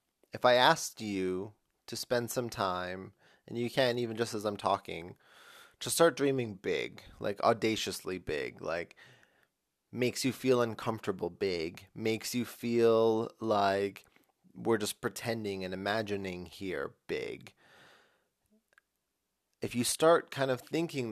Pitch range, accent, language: 100-130 Hz, American, English